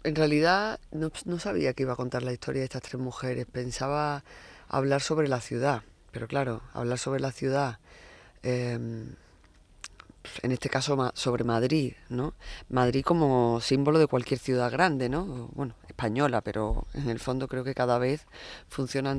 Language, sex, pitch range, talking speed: Spanish, female, 120-135 Hz, 165 wpm